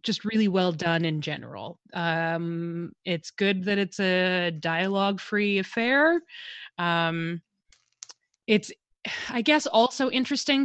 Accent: American